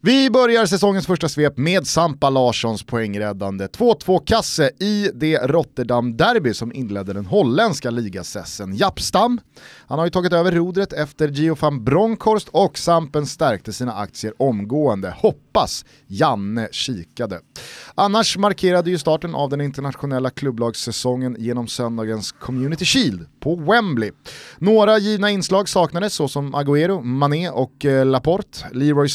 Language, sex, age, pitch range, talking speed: Swedish, male, 30-49, 120-180 Hz, 130 wpm